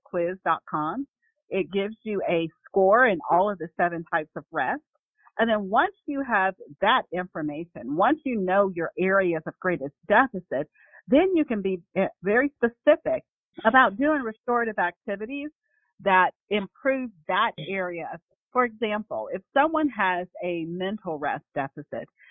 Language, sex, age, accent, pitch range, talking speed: English, female, 40-59, American, 175-235 Hz, 140 wpm